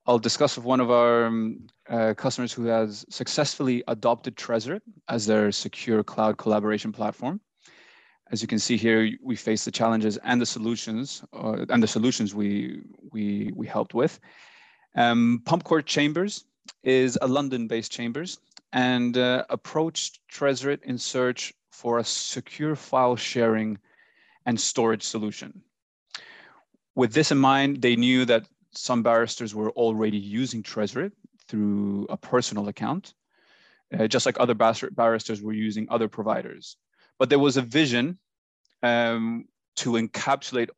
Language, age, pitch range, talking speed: English, 30-49, 110-130 Hz, 140 wpm